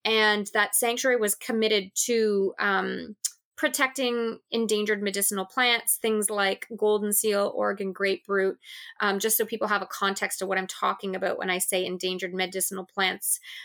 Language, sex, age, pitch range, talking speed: English, female, 20-39, 195-225 Hz, 160 wpm